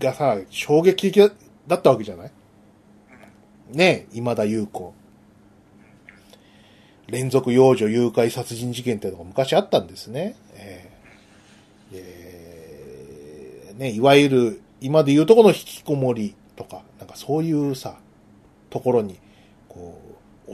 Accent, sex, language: native, male, Japanese